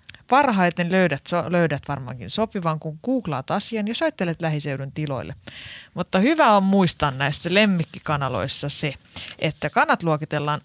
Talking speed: 125 wpm